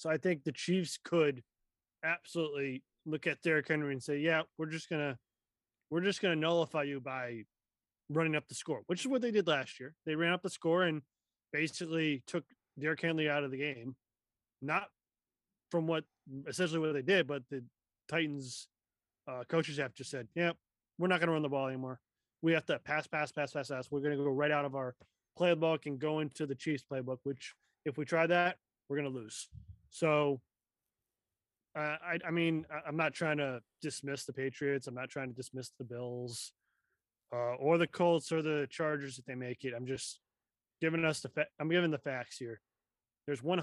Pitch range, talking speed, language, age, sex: 125-160 Hz, 200 wpm, English, 20-39, male